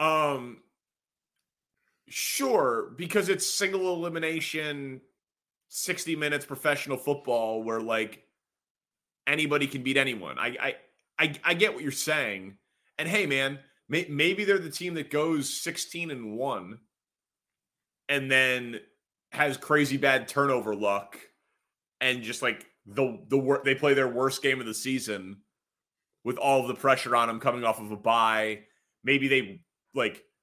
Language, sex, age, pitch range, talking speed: English, male, 30-49, 115-150 Hz, 145 wpm